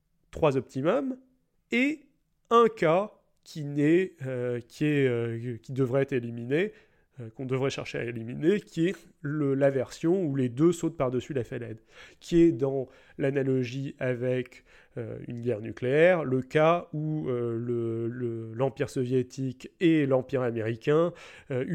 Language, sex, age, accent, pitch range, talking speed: French, male, 30-49, French, 120-155 Hz, 145 wpm